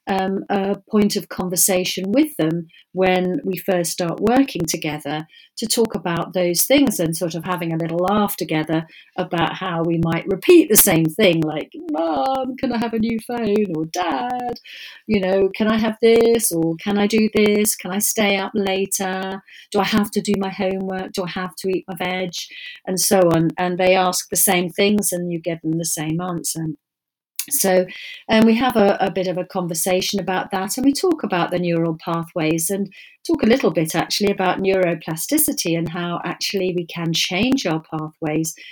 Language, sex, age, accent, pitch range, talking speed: English, female, 40-59, British, 170-205 Hz, 195 wpm